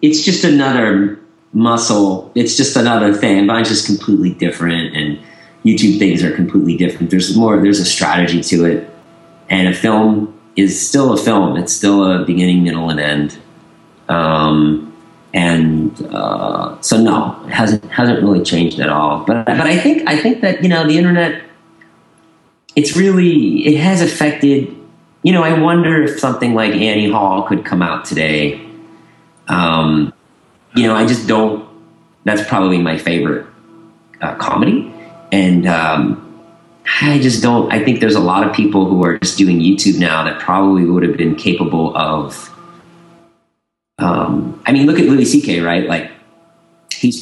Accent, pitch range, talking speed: American, 85-145 Hz, 165 wpm